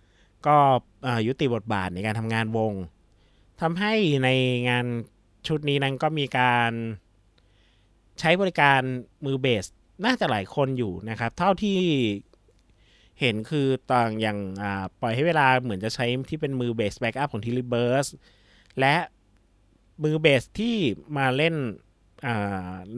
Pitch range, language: 105-140 Hz, Thai